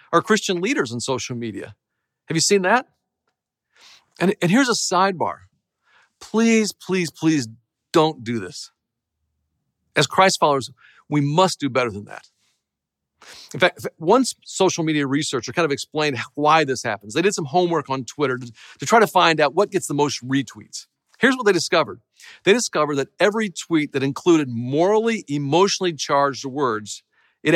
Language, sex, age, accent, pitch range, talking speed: English, male, 40-59, American, 135-185 Hz, 160 wpm